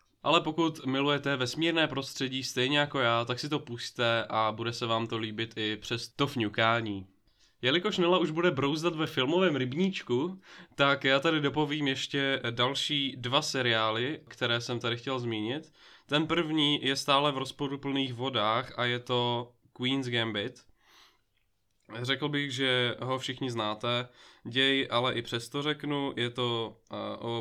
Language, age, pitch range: Czech, 20-39, 115-140 Hz